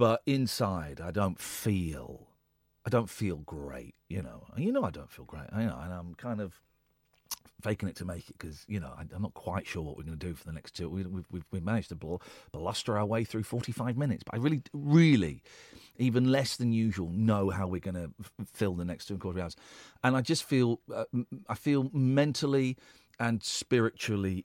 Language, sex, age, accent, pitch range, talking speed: English, male, 40-59, British, 90-130 Hz, 215 wpm